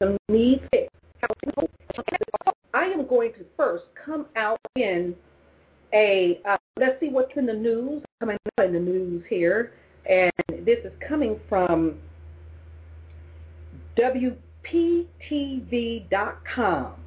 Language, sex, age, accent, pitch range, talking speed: English, female, 40-59, American, 185-275 Hz, 100 wpm